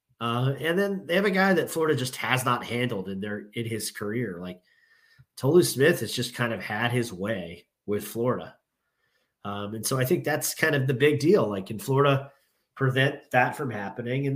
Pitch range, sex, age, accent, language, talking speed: 110-140 Hz, male, 30-49, American, English, 205 wpm